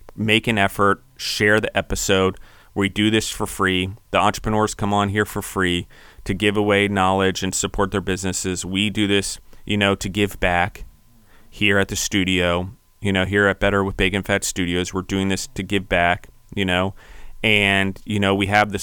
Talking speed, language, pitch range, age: 195 wpm, English, 95-105 Hz, 30-49